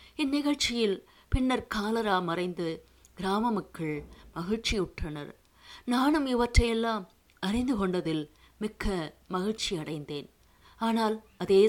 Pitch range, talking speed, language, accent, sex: 170-230 Hz, 75 wpm, Tamil, native, female